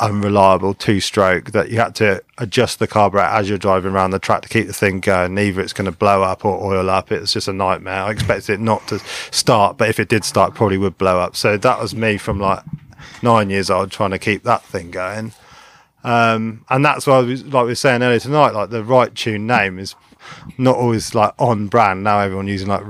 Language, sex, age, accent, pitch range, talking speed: English, male, 30-49, British, 100-120 Hz, 240 wpm